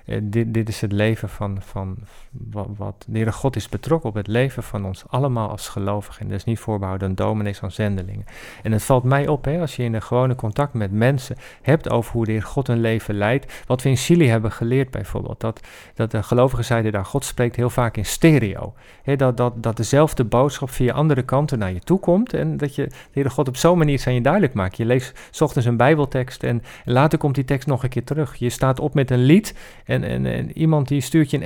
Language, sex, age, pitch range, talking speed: Dutch, male, 50-69, 115-150 Hz, 250 wpm